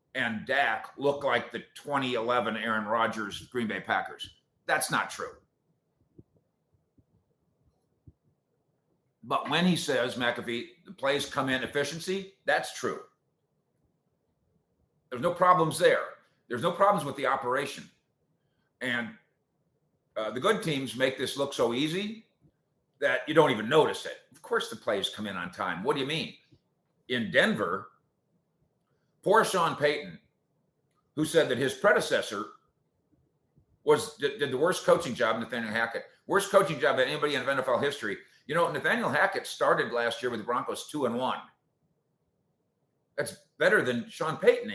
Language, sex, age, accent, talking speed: English, male, 50-69, American, 145 wpm